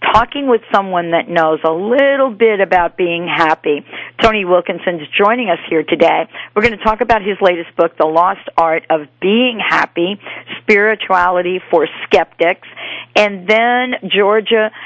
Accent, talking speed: American, 155 wpm